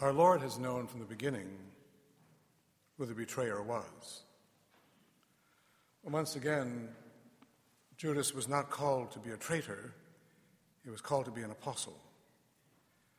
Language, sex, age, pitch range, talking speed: English, male, 60-79, 115-145 Hz, 125 wpm